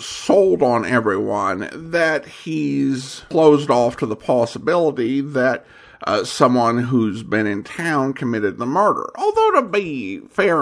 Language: English